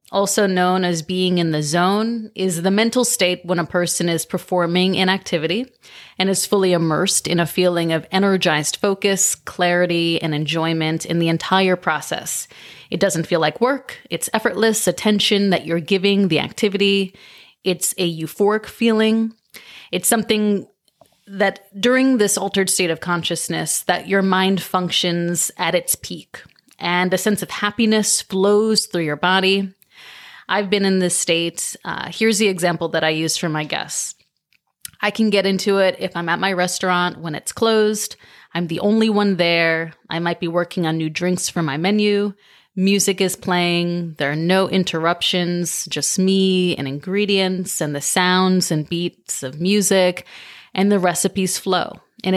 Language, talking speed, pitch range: English, 165 wpm, 170-200 Hz